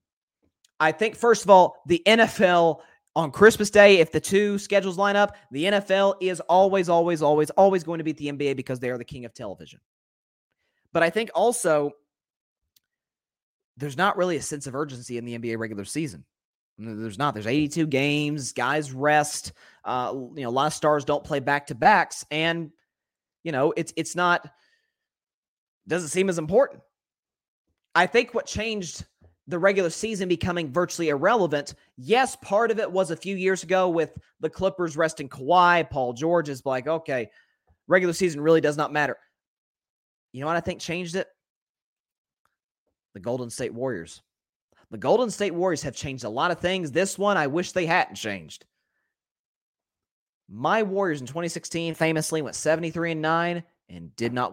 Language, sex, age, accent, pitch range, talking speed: English, male, 30-49, American, 145-185 Hz, 165 wpm